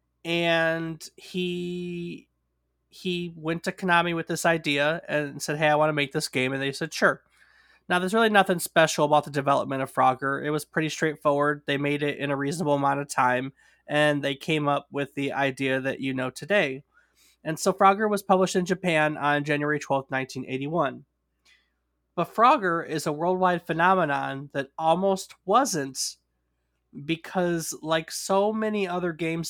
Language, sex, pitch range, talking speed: English, male, 140-170 Hz, 165 wpm